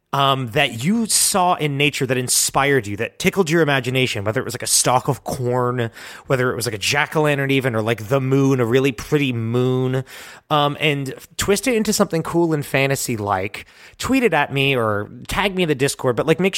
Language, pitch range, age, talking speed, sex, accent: English, 135-190 Hz, 30-49, 215 wpm, male, American